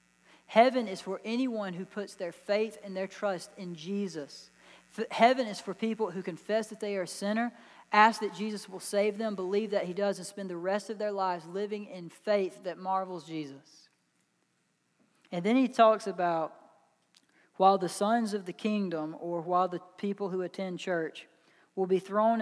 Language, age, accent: English, 40-59, American